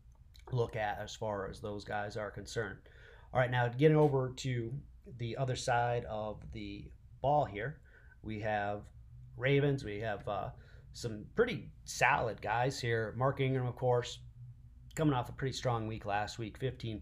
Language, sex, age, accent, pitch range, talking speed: English, male, 30-49, American, 110-125 Hz, 160 wpm